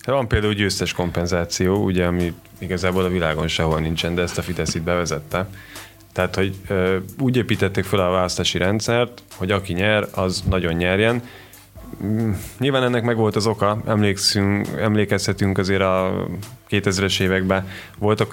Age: 20-39